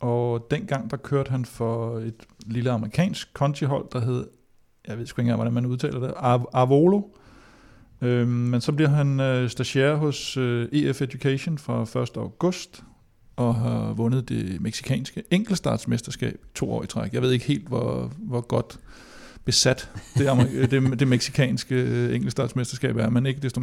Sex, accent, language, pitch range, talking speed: male, native, Danish, 115-130 Hz, 145 wpm